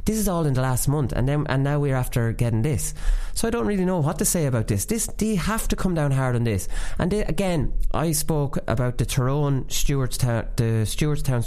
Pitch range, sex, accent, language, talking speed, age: 105-145 Hz, male, Irish, English, 230 wpm, 20-39